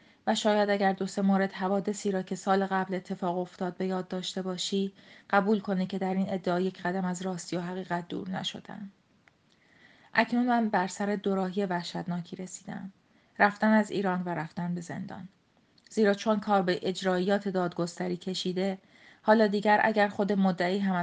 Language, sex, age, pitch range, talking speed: Persian, female, 30-49, 185-210 Hz, 165 wpm